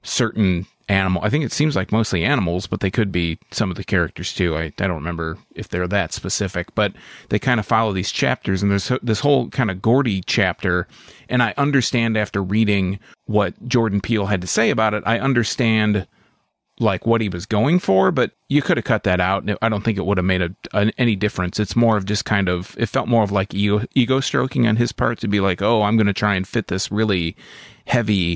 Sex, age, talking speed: male, 30-49, 235 wpm